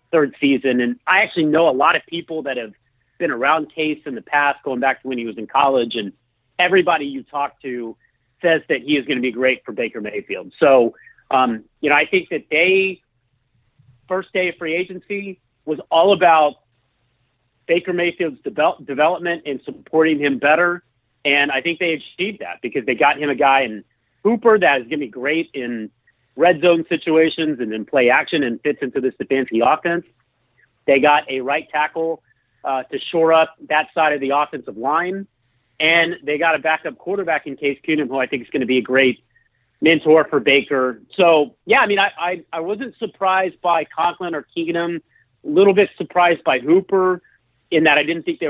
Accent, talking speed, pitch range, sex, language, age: American, 200 wpm, 130-170 Hz, male, English, 40-59